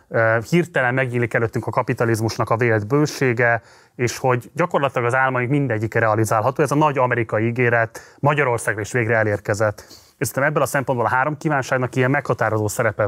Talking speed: 160 wpm